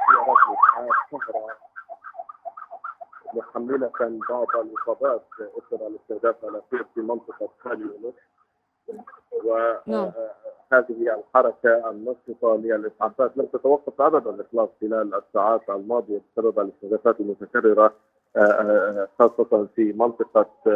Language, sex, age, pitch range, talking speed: Arabic, male, 40-59, 110-135 Hz, 80 wpm